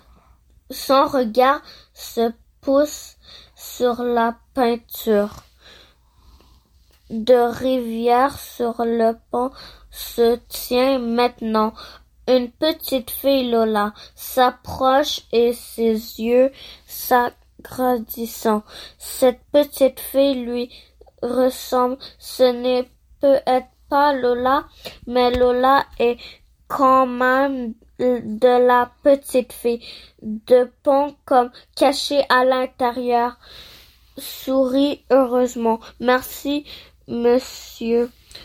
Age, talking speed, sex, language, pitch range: 20-39, 85 wpm, female, French, 235-265 Hz